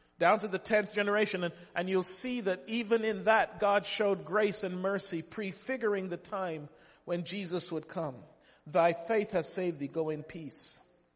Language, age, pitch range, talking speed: English, 40-59, 145-205 Hz, 175 wpm